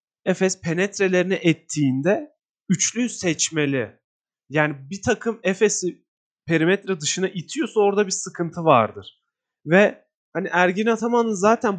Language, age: Turkish, 30-49